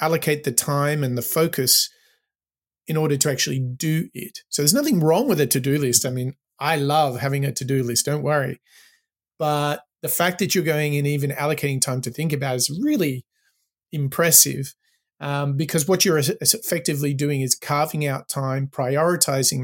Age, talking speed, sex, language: 30-49, 175 wpm, male, English